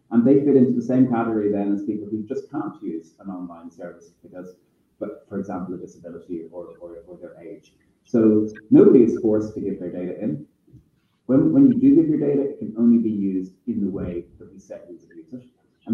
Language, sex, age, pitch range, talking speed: English, male, 30-49, 90-110 Hz, 220 wpm